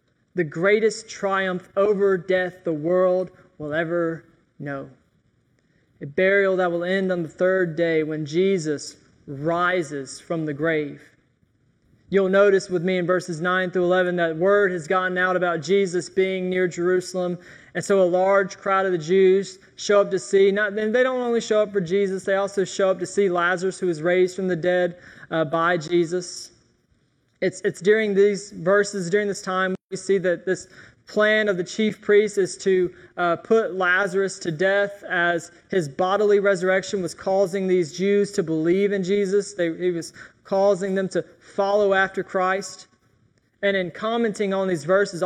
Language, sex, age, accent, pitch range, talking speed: English, male, 20-39, American, 180-205 Hz, 170 wpm